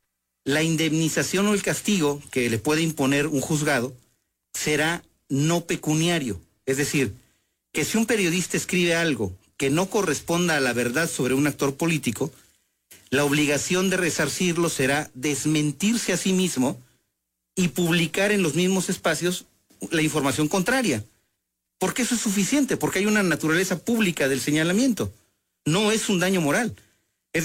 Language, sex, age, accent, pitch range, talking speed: English, male, 40-59, Mexican, 135-180 Hz, 145 wpm